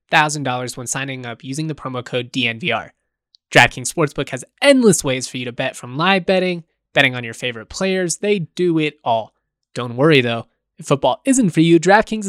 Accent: American